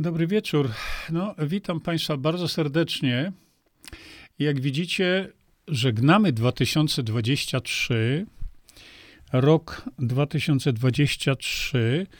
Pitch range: 135-165 Hz